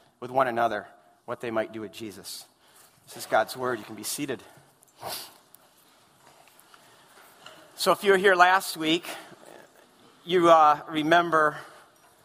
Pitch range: 160-220 Hz